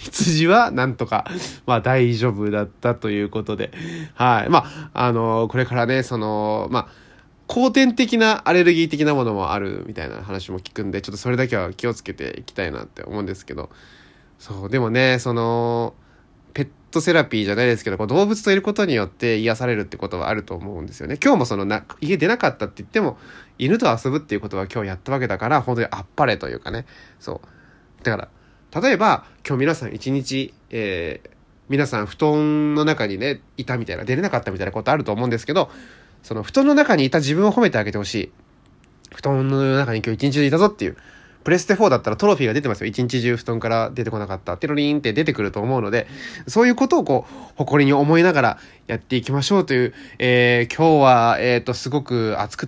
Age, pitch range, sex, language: 20-39, 110-155 Hz, male, Japanese